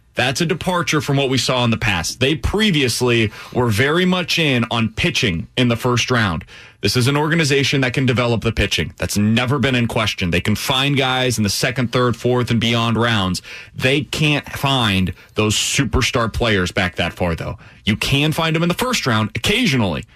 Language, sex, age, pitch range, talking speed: English, male, 30-49, 110-135 Hz, 200 wpm